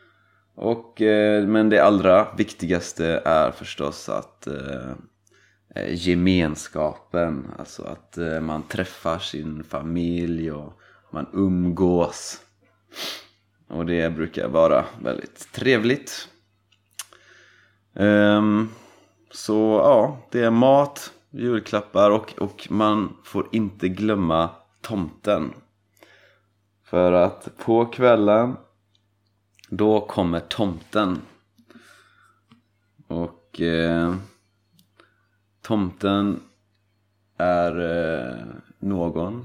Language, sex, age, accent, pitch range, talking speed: Swedish, male, 30-49, native, 90-105 Hz, 70 wpm